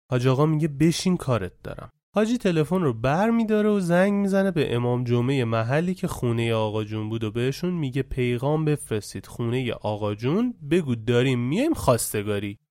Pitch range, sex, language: 130-220 Hz, male, English